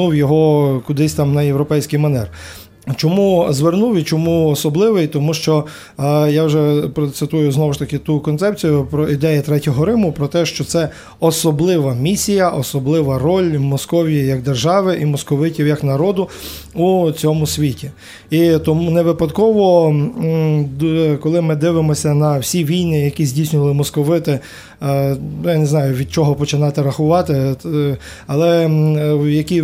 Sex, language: male, Ukrainian